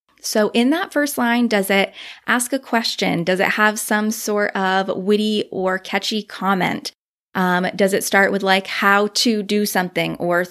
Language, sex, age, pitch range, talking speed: English, female, 20-39, 185-230 Hz, 175 wpm